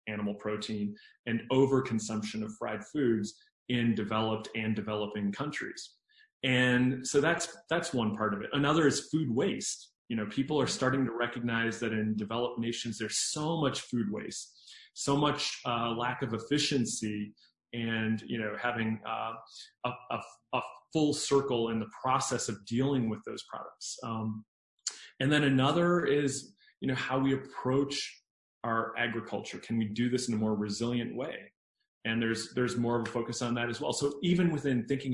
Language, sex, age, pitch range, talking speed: English, male, 30-49, 110-135 Hz, 170 wpm